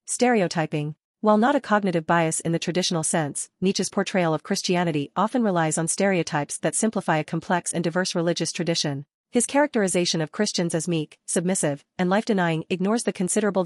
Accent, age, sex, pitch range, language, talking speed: American, 40-59, female, 165-205 Hz, English, 165 wpm